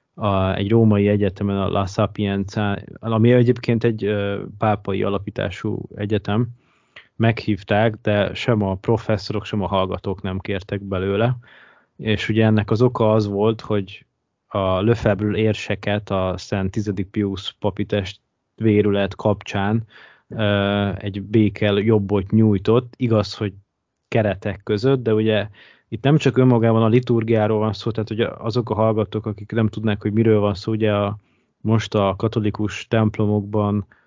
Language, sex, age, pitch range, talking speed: Hungarian, male, 20-39, 100-110 Hz, 135 wpm